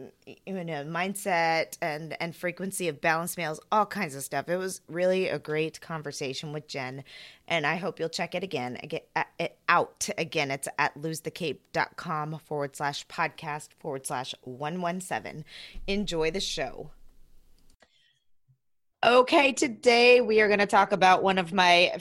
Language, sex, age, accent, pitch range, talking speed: English, female, 20-39, American, 155-190 Hz, 160 wpm